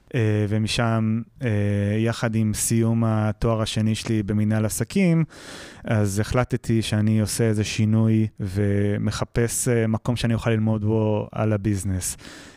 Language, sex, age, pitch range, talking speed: Hebrew, male, 20-39, 105-120 Hz, 110 wpm